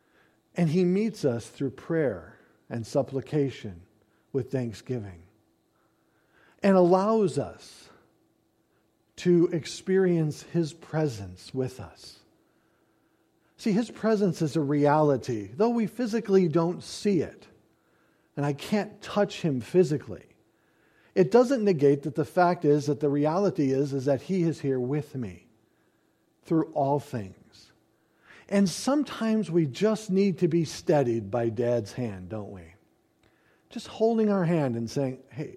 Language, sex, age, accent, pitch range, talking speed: English, male, 50-69, American, 125-195 Hz, 130 wpm